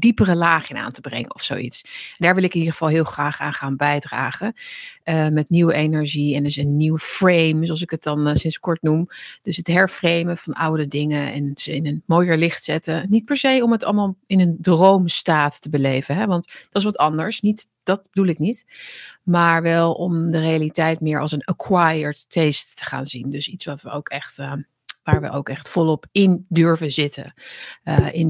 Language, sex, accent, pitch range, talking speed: Dutch, female, Dutch, 150-180 Hz, 215 wpm